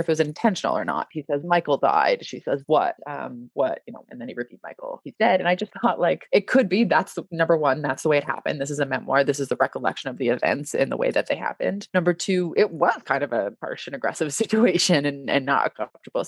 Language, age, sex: English, 20-39, female